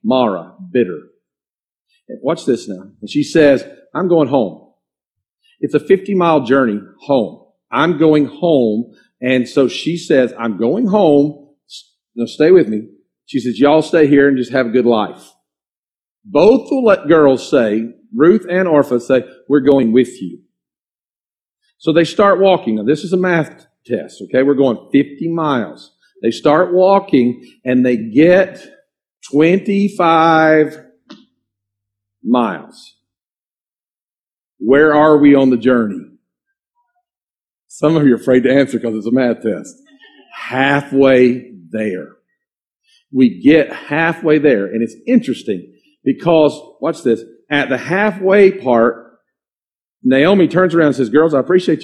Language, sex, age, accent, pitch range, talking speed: English, male, 50-69, American, 120-175 Hz, 140 wpm